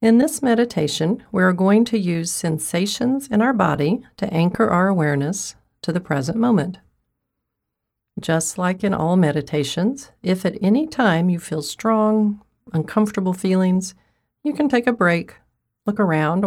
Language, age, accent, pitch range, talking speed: English, 40-59, American, 150-215 Hz, 145 wpm